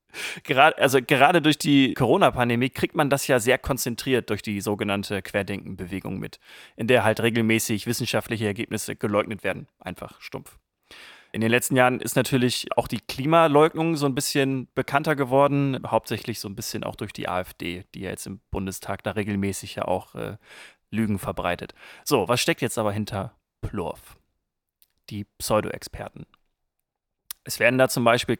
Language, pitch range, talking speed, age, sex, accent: German, 100-125 Hz, 155 wpm, 30-49, male, German